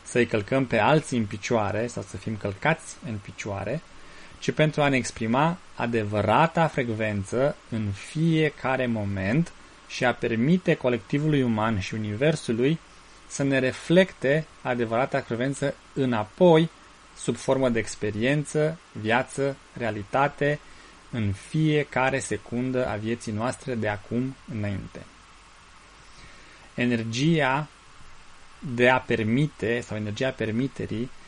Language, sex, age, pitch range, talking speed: Romanian, male, 20-39, 110-140 Hz, 110 wpm